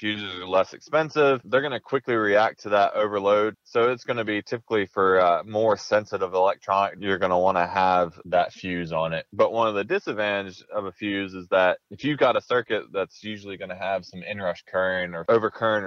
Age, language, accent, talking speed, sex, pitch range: 20-39, English, American, 220 wpm, male, 95-120 Hz